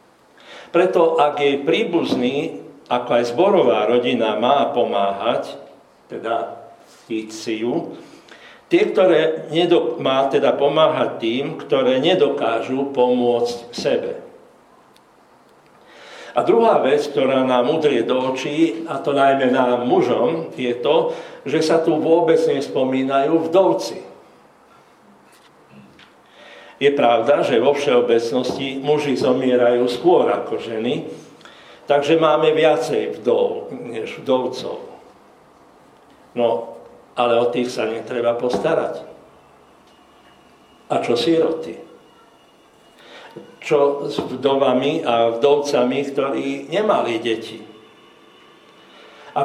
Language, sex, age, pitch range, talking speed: Slovak, male, 60-79, 120-165 Hz, 95 wpm